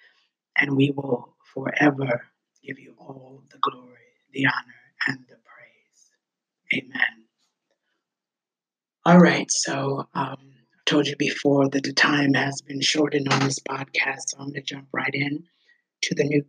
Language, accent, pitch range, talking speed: English, American, 140-165 Hz, 155 wpm